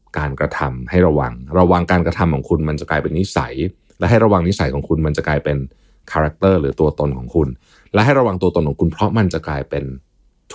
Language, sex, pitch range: Thai, male, 75-100 Hz